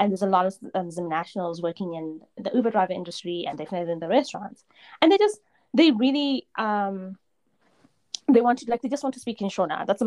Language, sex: English, female